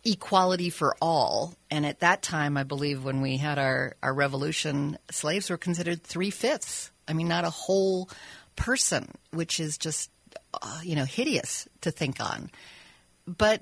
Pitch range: 150-180 Hz